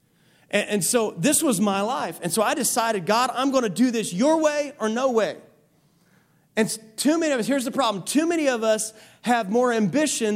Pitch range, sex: 200-250 Hz, male